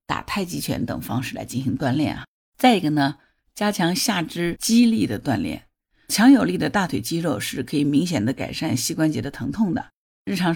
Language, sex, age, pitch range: Chinese, female, 50-69, 135-175 Hz